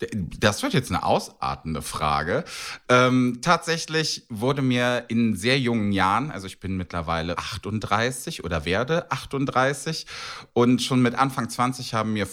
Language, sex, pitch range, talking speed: German, male, 90-115 Hz, 140 wpm